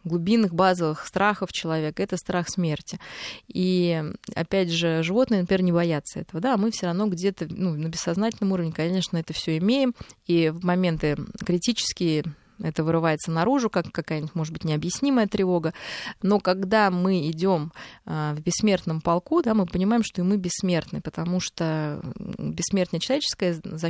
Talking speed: 155 wpm